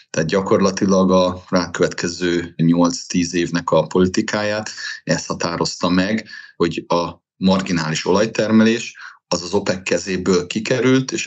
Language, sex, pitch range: Hungarian, male, 85-105 Hz